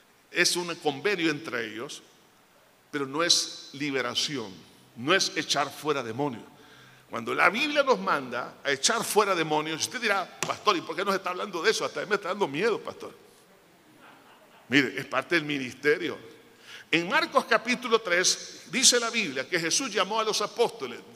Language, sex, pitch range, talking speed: Spanish, male, 170-240 Hz, 165 wpm